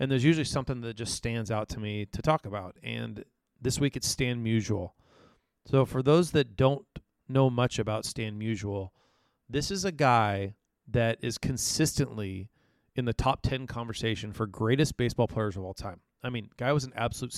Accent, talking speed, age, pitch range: American, 185 wpm, 30-49, 110-135 Hz